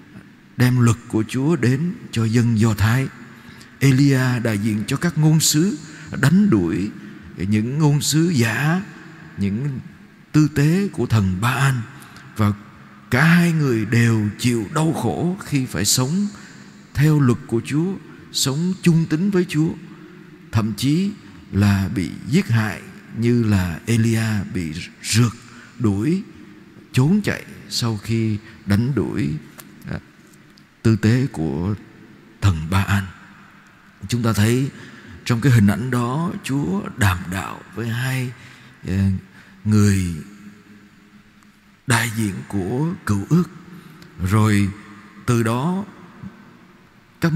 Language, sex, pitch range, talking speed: Vietnamese, male, 105-150 Hz, 120 wpm